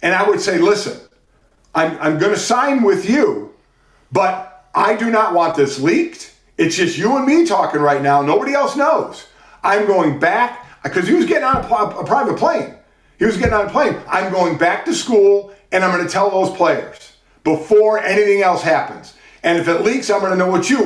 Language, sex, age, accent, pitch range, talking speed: English, male, 50-69, American, 165-215 Hz, 210 wpm